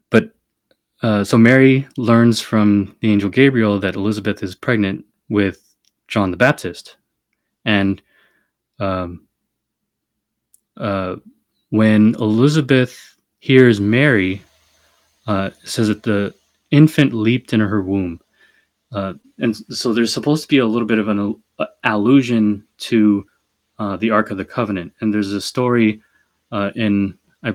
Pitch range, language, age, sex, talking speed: 100-120 Hz, English, 20-39, male, 130 wpm